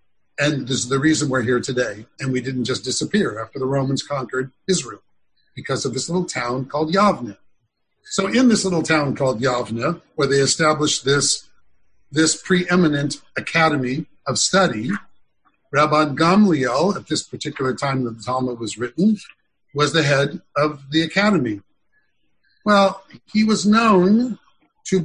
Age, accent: 50-69, American